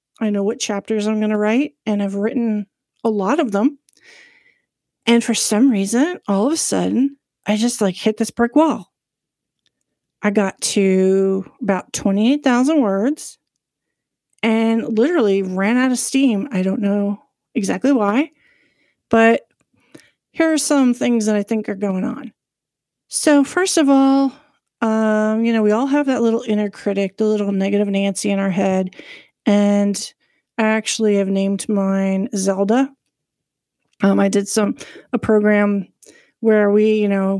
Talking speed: 155 wpm